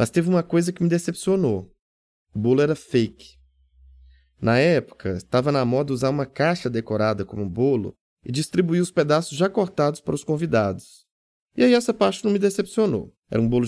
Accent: Brazilian